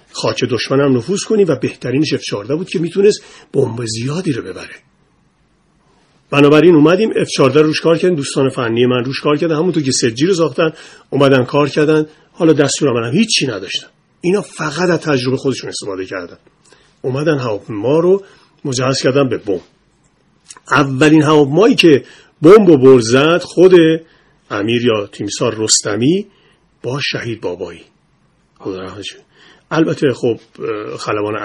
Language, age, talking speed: Persian, 40-59, 145 wpm